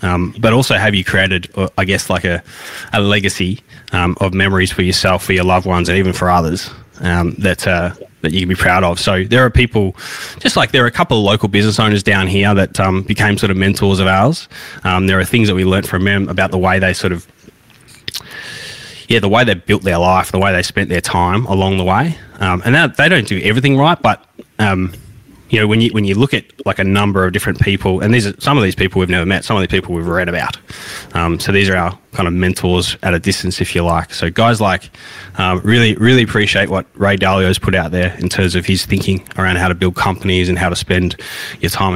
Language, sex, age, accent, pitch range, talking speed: English, male, 20-39, Australian, 90-105 Hz, 245 wpm